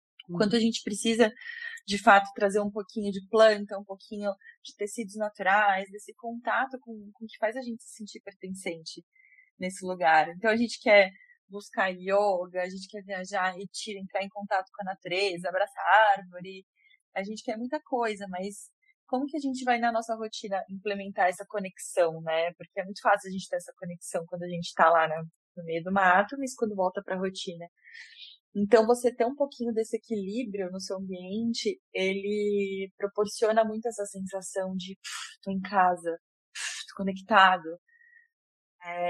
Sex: female